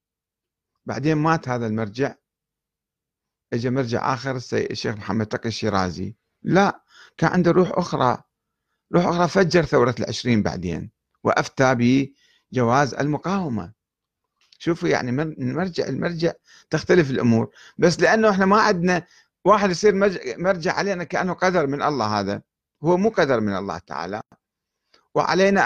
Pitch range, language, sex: 120-175 Hz, Arabic, male